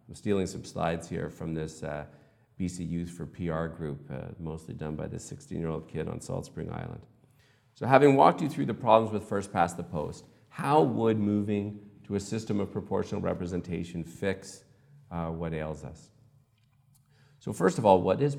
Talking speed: 185 wpm